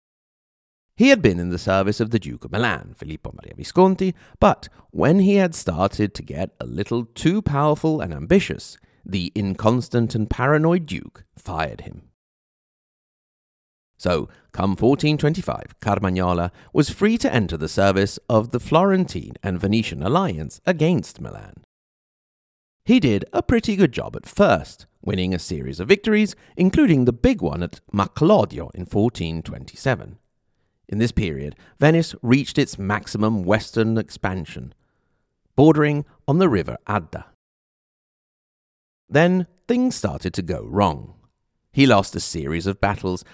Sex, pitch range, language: male, 95-155 Hz, English